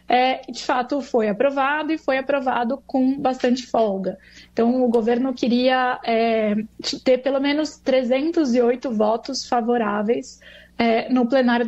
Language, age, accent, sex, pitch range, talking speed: Portuguese, 20-39, Brazilian, female, 230-265 Hz, 115 wpm